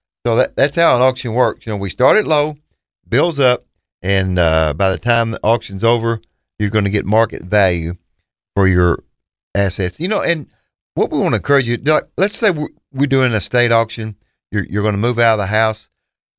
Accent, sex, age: American, male, 40-59